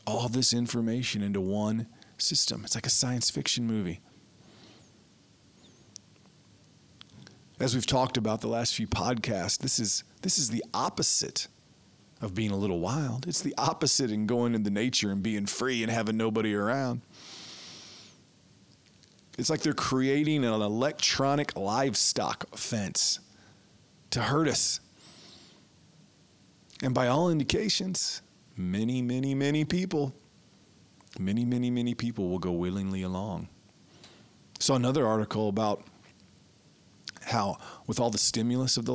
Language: English